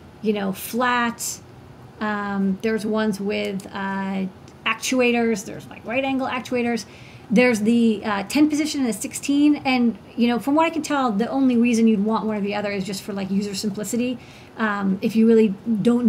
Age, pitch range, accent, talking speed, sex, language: 40-59, 200-235 Hz, American, 185 wpm, female, English